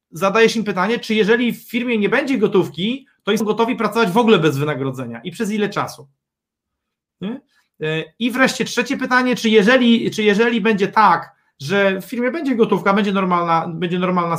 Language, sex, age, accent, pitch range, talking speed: Polish, male, 30-49, native, 175-240 Hz, 165 wpm